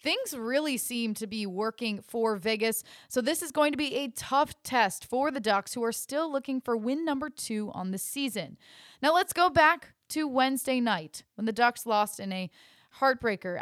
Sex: female